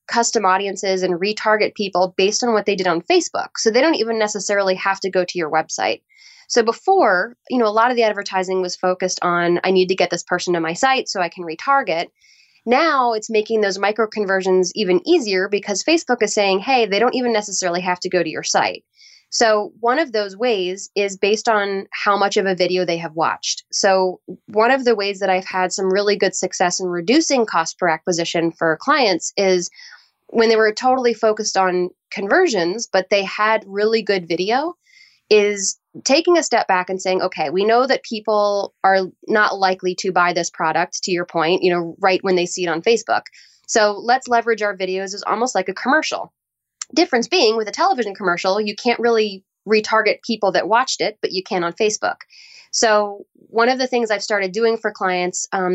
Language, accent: English, American